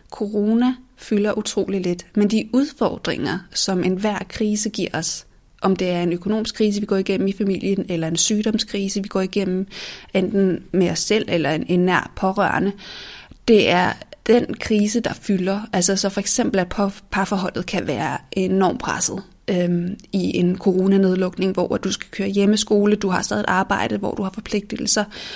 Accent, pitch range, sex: native, 185-210 Hz, female